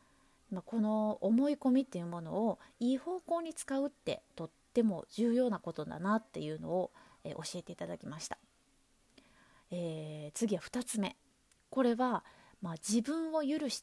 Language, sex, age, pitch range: Japanese, female, 20-39, 195-260 Hz